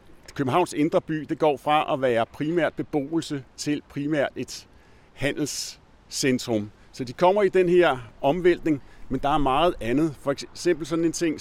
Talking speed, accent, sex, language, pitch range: 165 wpm, native, male, Danish, 125-160 Hz